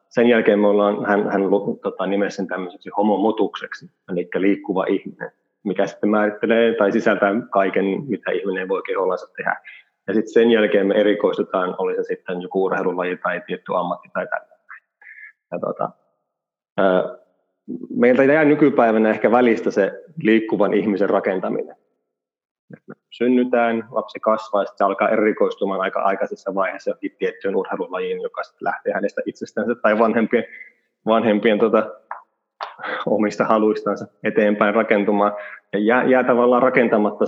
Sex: male